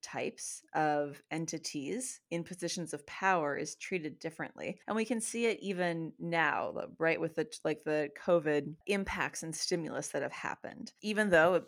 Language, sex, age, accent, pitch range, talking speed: English, female, 30-49, American, 155-185 Hz, 160 wpm